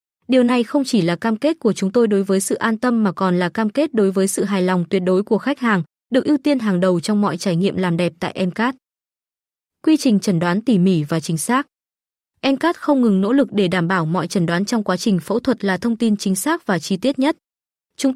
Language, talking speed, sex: Vietnamese, 260 wpm, female